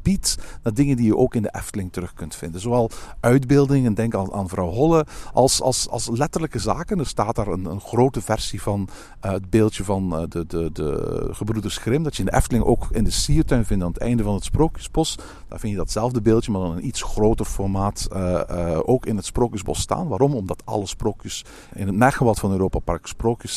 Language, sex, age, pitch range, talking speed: Dutch, male, 50-69, 95-130 Hz, 225 wpm